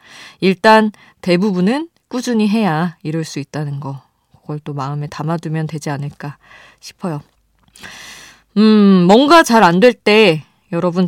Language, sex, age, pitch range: Korean, female, 20-39, 155-225 Hz